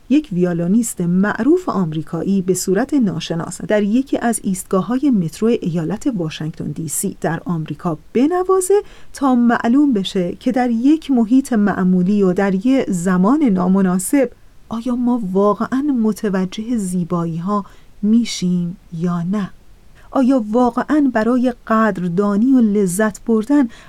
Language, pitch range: Persian, 190-250 Hz